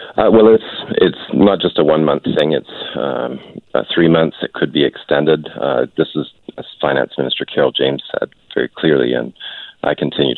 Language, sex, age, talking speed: English, male, 40-59, 185 wpm